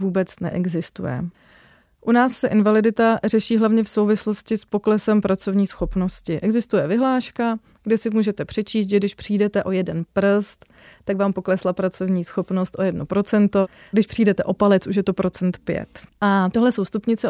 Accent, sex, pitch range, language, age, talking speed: native, female, 195-220 Hz, Czech, 30-49, 160 wpm